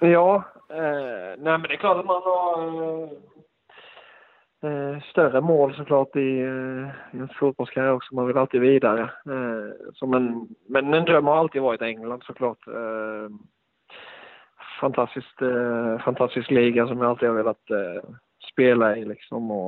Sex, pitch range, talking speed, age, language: male, 125-150 Hz, 155 wpm, 20-39, Swedish